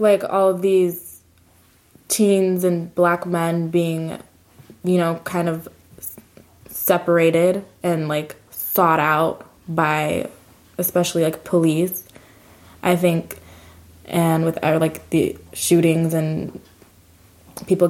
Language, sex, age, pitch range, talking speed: English, female, 20-39, 155-180 Hz, 105 wpm